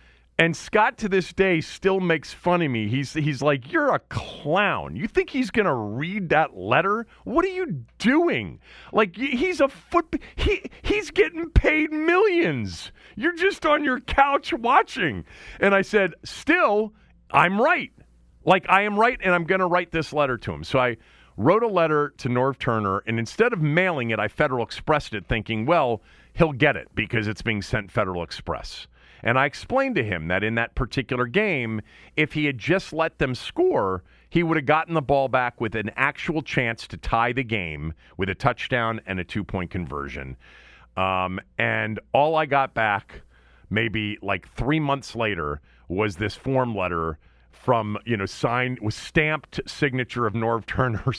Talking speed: 180 wpm